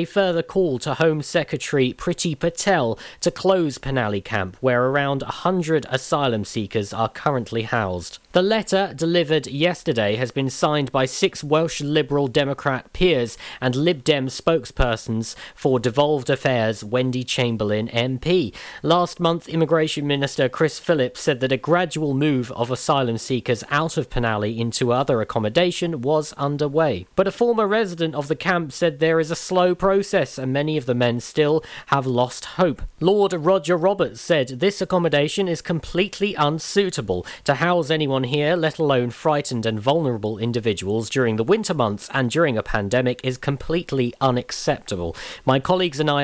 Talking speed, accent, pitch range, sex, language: 155 wpm, British, 125-165 Hz, male, English